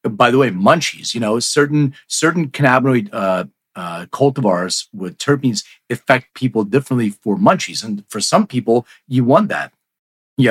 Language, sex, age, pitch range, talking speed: English, male, 40-59, 105-140 Hz, 155 wpm